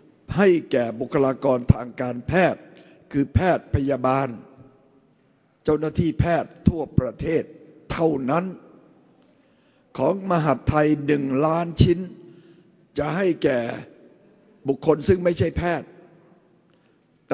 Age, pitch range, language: 60-79, 130-175 Hz, Thai